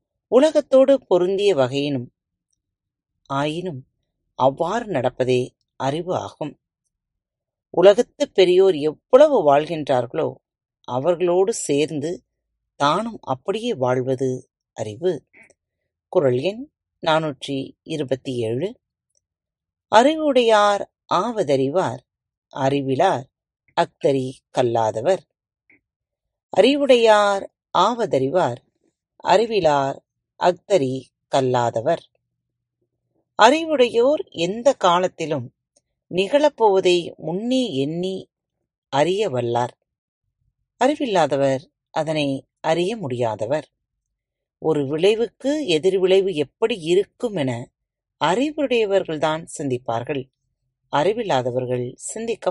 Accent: native